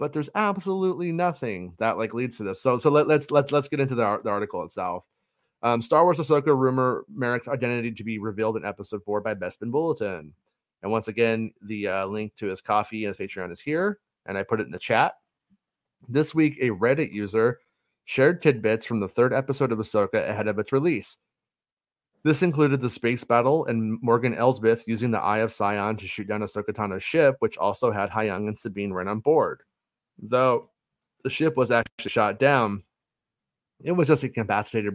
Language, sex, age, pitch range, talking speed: English, male, 30-49, 105-135 Hz, 200 wpm